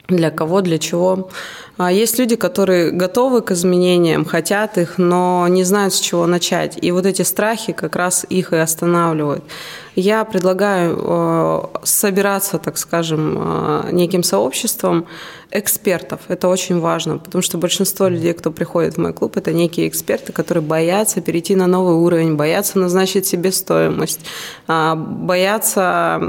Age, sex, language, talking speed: 20-39, female, Russian, 140 wpm